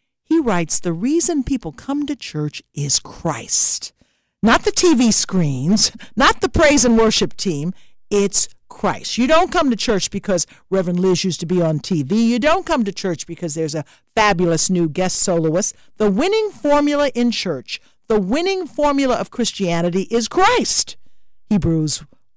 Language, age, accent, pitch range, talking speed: English, 60-79, American, 175-280 Hz, 160 wpm